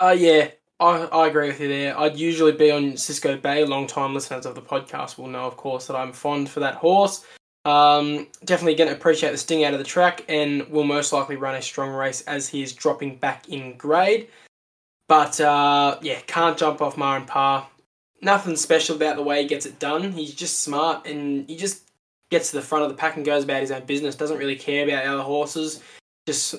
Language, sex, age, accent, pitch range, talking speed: English, male, 10-29, Australian, 140-155 Hz, 220 wpm